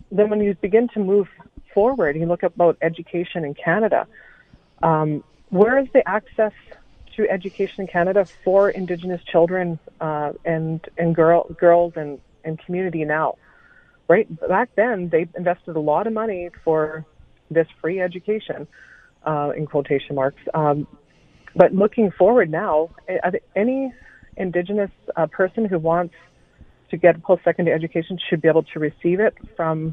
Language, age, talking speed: English, 30-49, 150 wpm